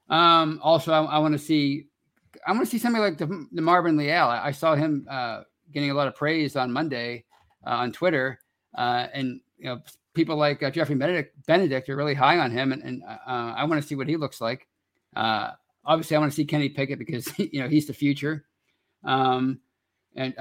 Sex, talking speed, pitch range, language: male, 220 wpm, 130-155 Hz, English